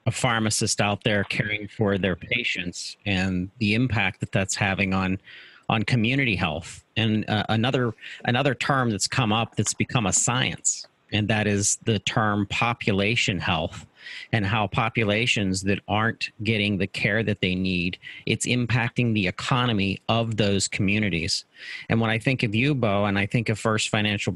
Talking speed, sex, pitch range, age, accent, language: 170 wpm, male, 100-115 Hz, 40-59, American, English